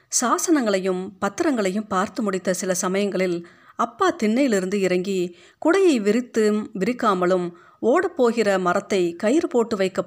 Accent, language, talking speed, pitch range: native, Tamil, 100 wpm, 185-250 Hz